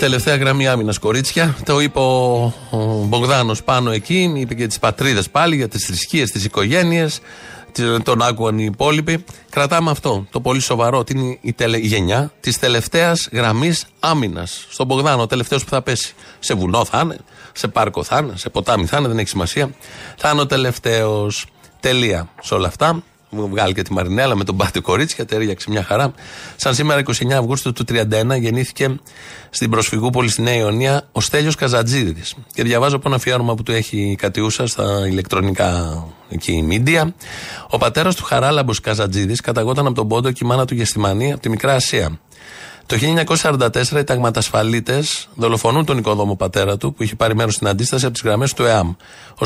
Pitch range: 110-135 Hz